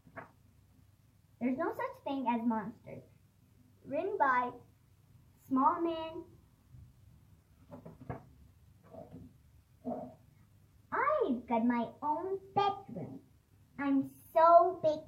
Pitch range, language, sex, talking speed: 235-390 Hz, Persian, male, 70 wpm